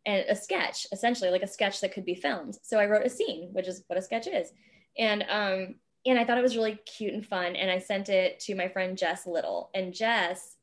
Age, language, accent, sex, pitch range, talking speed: 20-39, English, American, female, 185-245 Hz, 250 wpm